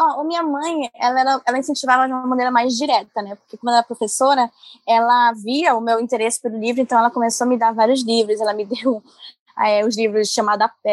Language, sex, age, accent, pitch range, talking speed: Portuguese, female, 10-29, Brazilian, 225-265 Hz, 220 wpm